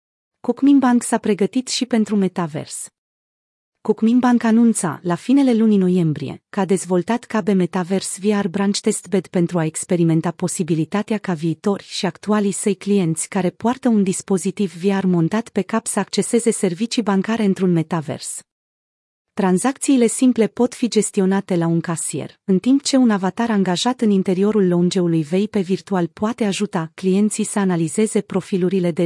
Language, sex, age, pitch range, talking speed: Romanian, female, 30-49, 175-215 Hz, 150 wpm